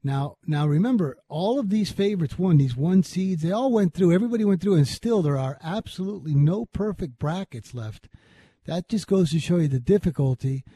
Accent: American